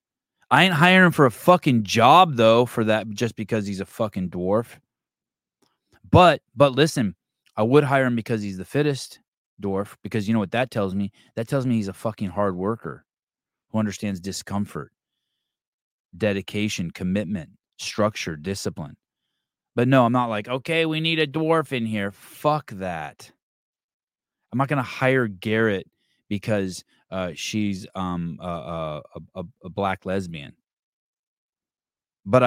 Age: 20-39